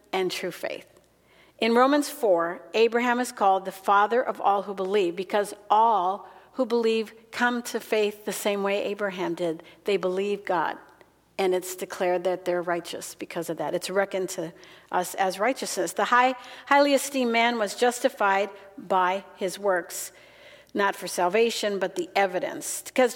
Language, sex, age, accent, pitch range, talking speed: English, female, 50-69, American, 185-225 Hz, 160 wpm